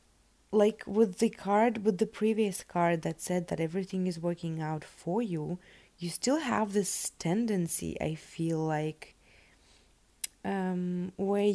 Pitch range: 165-200 Hz